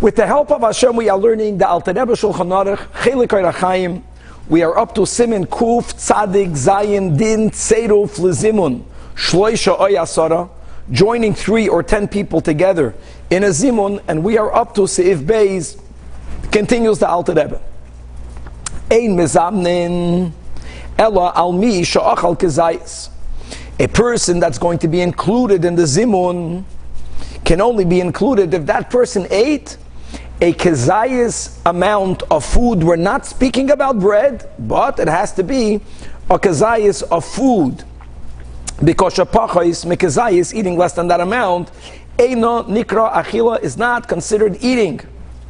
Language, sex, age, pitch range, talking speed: English, male, 50-69, 170-215 Hz, 135 wpm